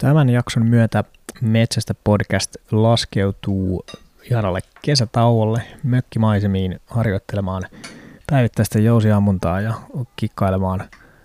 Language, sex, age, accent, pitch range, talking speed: Finnish, male, 20-39, native, 105-125 Hz, 70 wpm